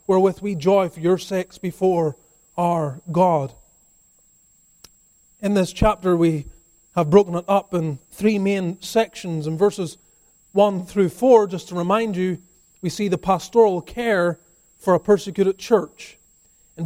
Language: English